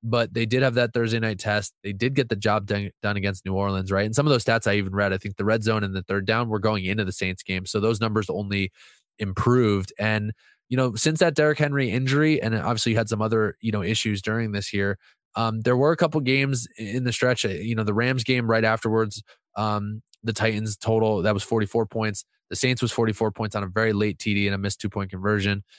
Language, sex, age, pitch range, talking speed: English, male, 20-39, 100-115 Hz, 245 wpm